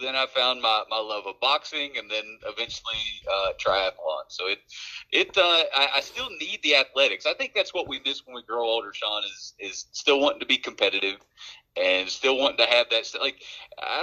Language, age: English, 30-49